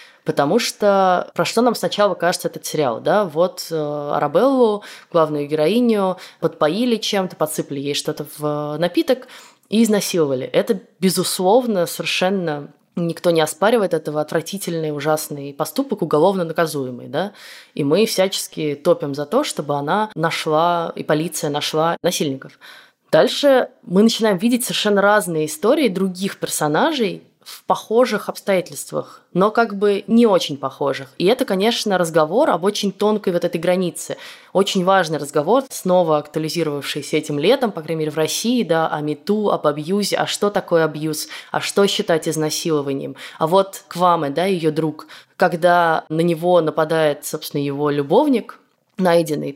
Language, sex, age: Russian, female, 20-39